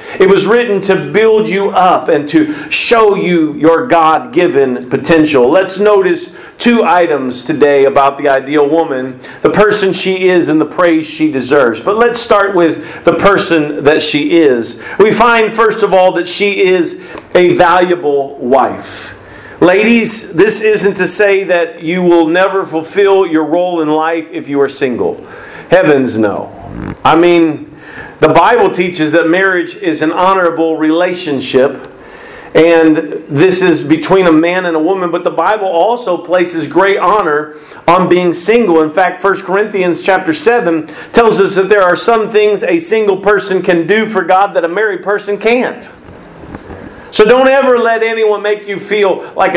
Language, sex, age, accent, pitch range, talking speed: English, male, 40-59, American, 160-210 Hz, 165 wpm